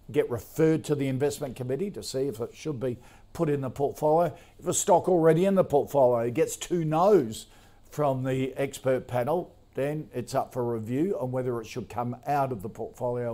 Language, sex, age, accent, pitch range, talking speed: English, male, 50-69, Australian, 110-135 Hz, 200 wpm